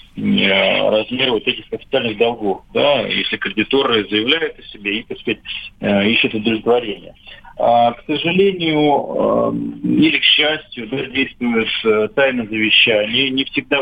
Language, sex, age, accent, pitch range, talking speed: Russian, male, 40-59, native, 110-150 Hz, 115 wpm